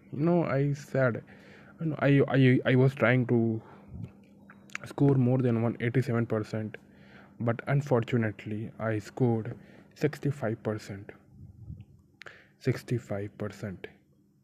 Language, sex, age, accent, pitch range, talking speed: Hindi, male, 20-39, native, 110-135 Hz, 110 wpm